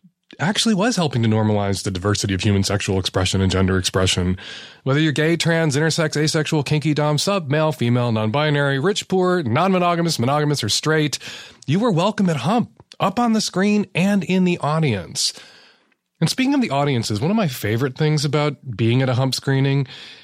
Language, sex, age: English, male, 30-49